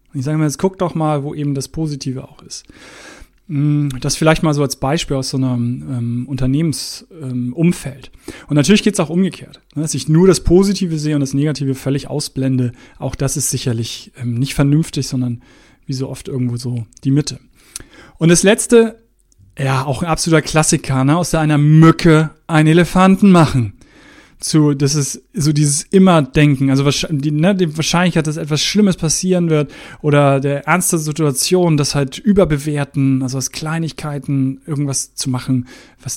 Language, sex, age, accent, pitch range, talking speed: German, male, 30-49, German, 135-165 Hz, 175 wpm